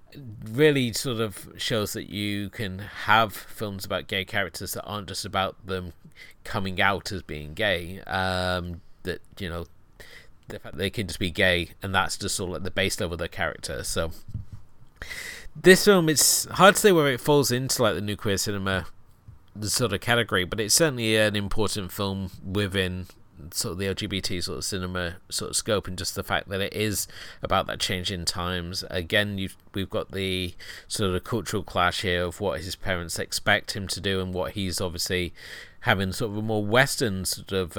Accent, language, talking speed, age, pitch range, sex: British, English, 200 wpm, 30-49, 90-110 Hz, male